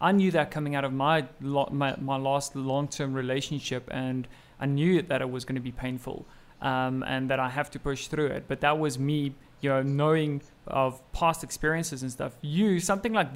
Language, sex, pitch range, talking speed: English, male, 140-175 Hz, 210 wpm